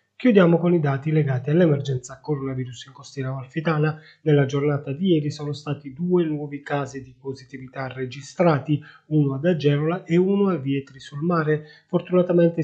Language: Italian